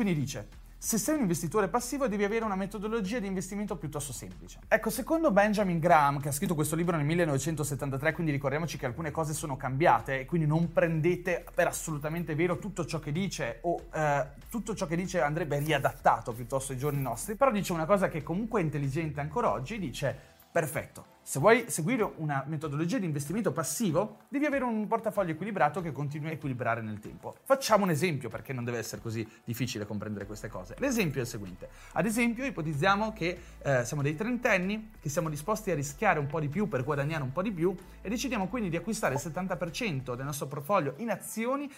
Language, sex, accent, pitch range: Italian, male, native, 145-210 Hz